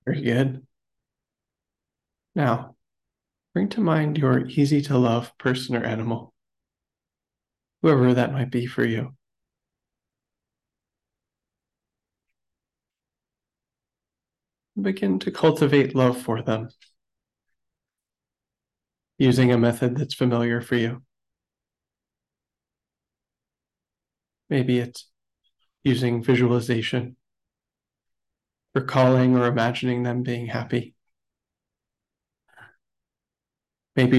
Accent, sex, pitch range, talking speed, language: American, male, 120-135 Hz, 75 wpm, English